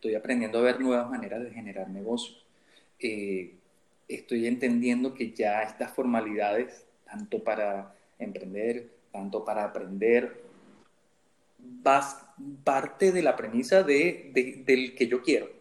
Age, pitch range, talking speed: 30-49, 120-175 Hz, 125 wpm